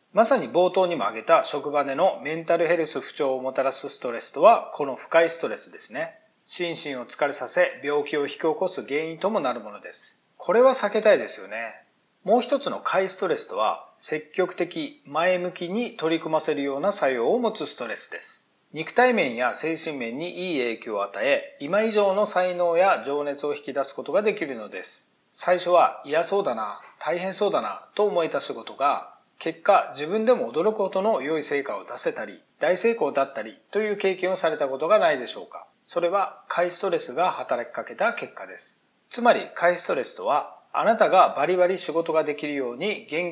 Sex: male